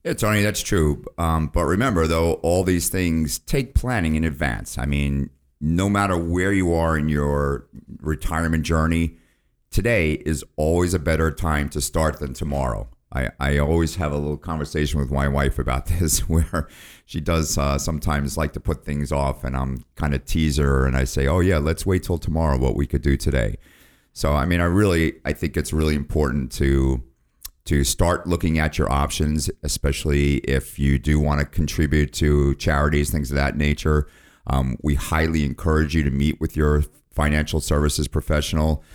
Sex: male